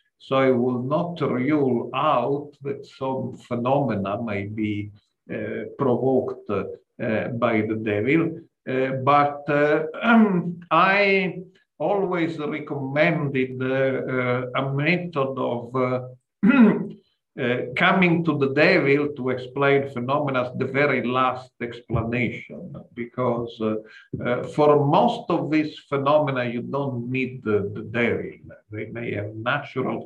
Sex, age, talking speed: male, 50-69, 120 wpm